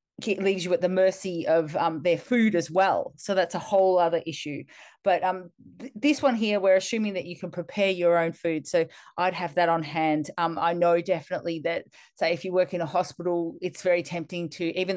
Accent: Australian